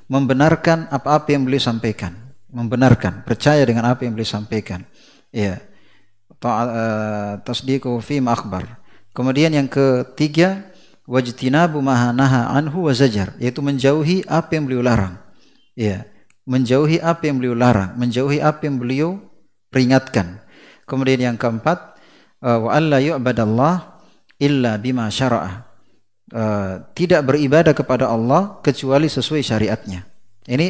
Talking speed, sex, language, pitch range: 100 wpm, male, Indonesian, 115-145 Hz